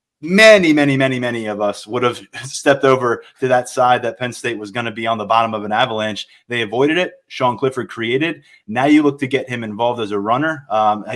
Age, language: 20-39, English